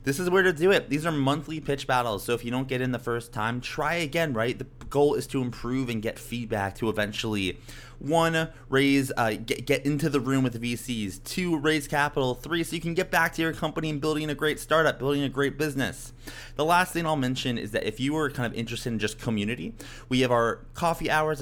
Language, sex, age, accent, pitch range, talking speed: English, male, 20-39, American, 115-145 Hz, 240 wpm